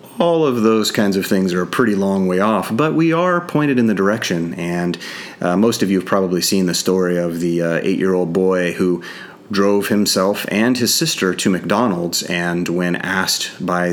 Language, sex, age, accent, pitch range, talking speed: English, male, 30-49, American, 90-115 Hz, 200 wpm